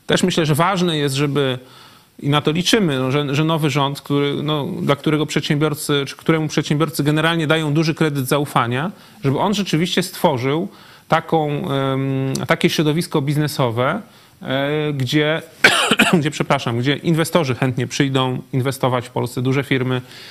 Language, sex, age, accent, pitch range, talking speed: Polish, male, 30-49, native, 130-160 Hz, 150 wpm